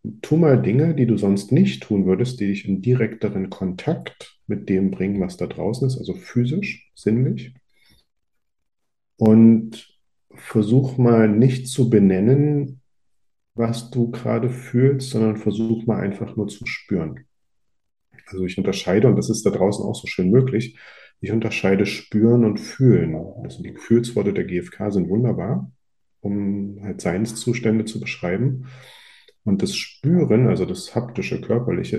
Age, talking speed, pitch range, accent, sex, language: 40-59, 145 wpm, 95-125 Hz, German, male, German